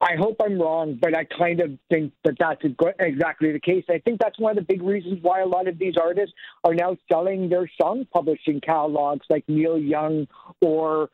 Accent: American